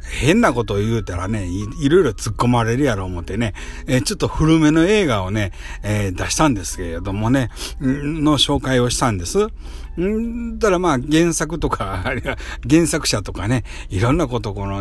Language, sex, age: Japanese, male, 60-79